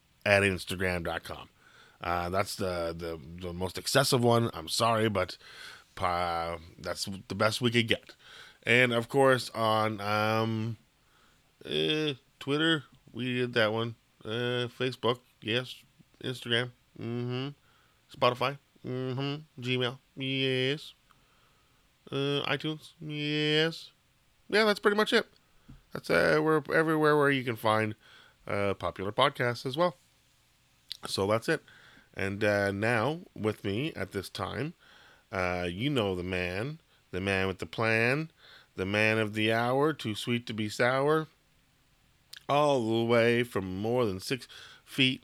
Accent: American